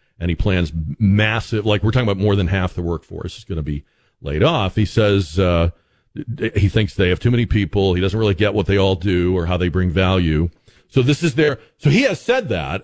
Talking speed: 240 wpm